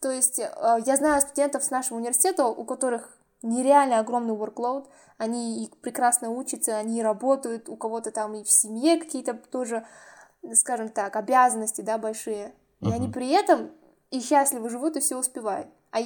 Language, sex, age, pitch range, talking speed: Russian, female, 10-29, 230-295 Hz, 160 wpm